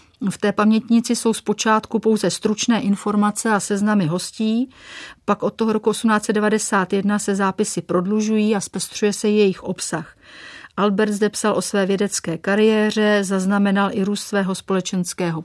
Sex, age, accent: female, 40-59, native